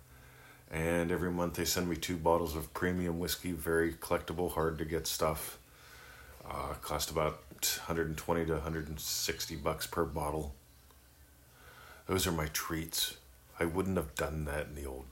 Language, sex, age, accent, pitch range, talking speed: English, male, 40-59, American, 75-95 Hz, 150 wpm